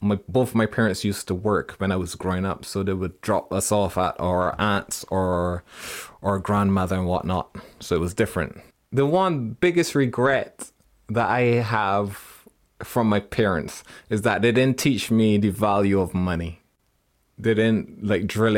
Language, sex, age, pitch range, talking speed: English, male, 20-39, 90-110 Hz, 175 wpm